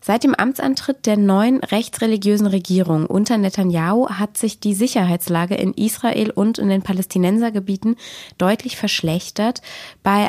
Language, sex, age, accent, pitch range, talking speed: German, female, 20-39, German, 175-220 Hz, 130 wpm